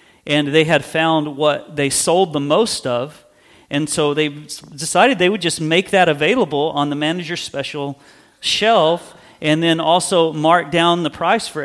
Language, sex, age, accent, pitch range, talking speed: English, male, 40-59, American, 135-160 Hz, 170 wpm